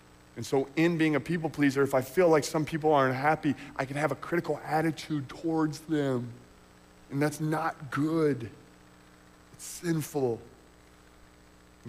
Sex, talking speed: male, 150 wpm